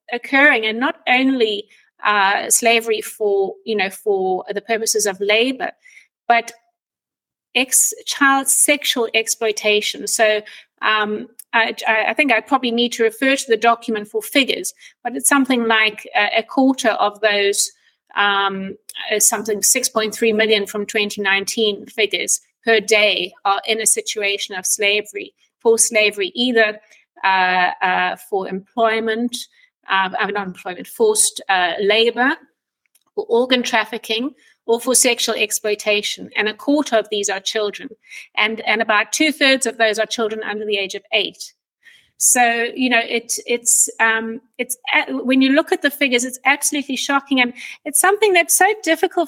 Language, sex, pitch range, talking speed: English, female, 215-275 Hz, 145 wpm